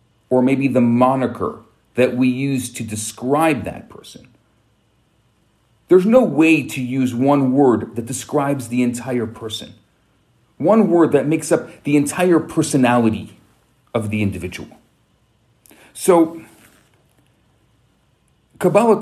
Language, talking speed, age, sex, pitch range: English, 115 wpm, 40-59, male, 110-155 Hz